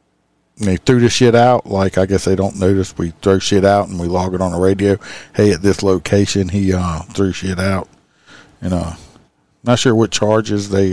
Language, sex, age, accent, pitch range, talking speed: English, male, 50-69, American, 90-115 Hz, 215 wpm